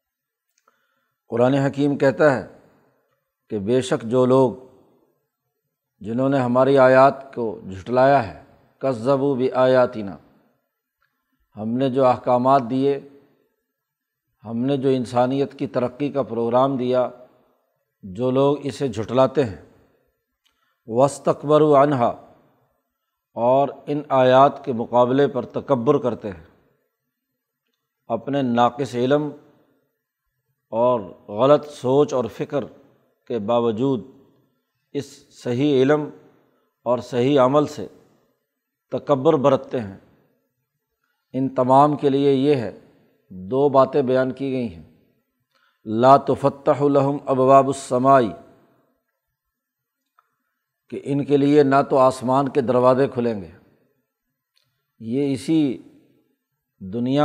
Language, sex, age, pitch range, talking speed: Urdu, male, 50-69, 125-140 Hz, 105 wpm